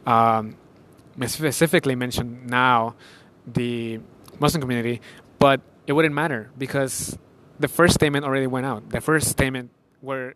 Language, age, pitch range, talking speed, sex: English, 20-39, 120-140 Hz, 135 wpm, male